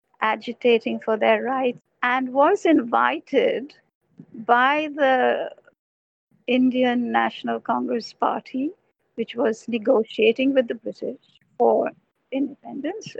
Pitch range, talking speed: 230-280 Hz, 95 wpm